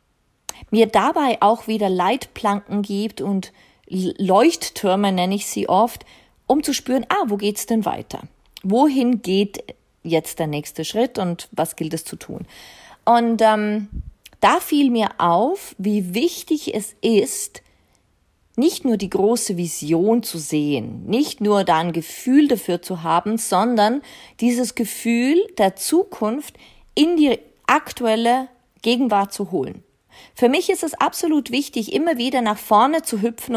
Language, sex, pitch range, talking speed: German, female, 200-275 Hz, 145 wpm